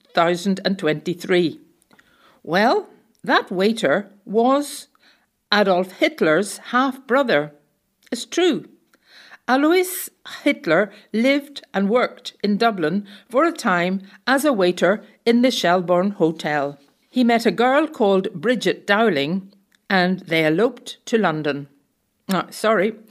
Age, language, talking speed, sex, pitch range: 60-79, English, 100 wpm, female, 175-245 Hz